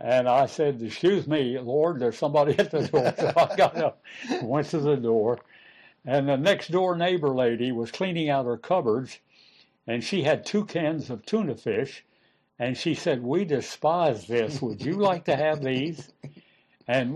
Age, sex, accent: 60-79, male, American